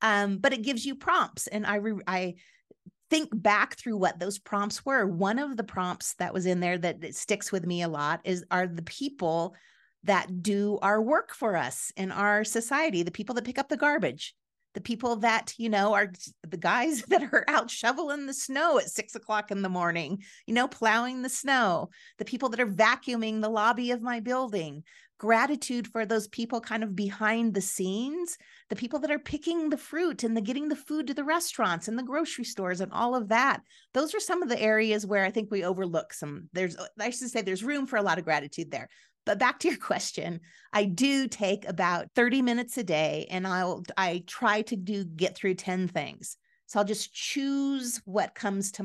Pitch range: 185-255 Hz